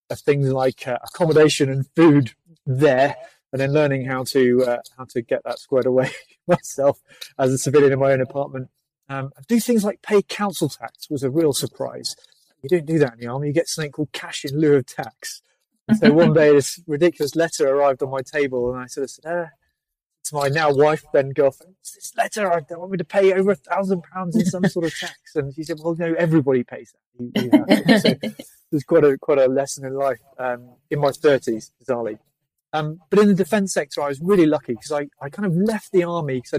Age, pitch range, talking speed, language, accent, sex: 30-49, 130-165 Hz, 235 wpm, English, British, male